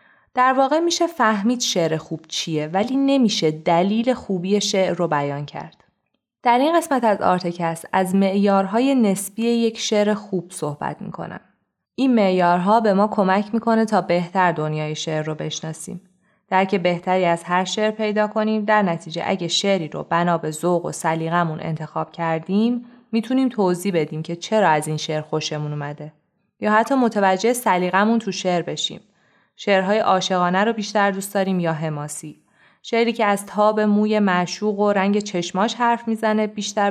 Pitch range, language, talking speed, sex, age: 165-210 Hz, Persian, 160 wpm, female, 20-39